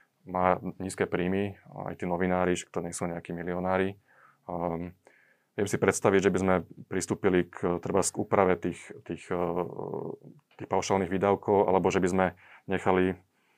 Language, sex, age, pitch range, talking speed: Slovak, male, 20-39, 95-105 Hz, 150 wpm